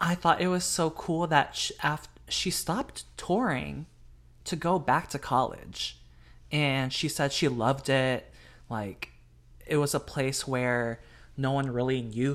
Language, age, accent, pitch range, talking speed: English, 20-39, American, 120-150 Hz, 155 wpm